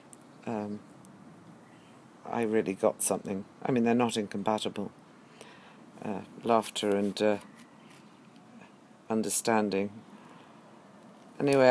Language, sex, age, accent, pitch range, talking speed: English, female, 50-69, British, 105-125 Hz, 80 wpm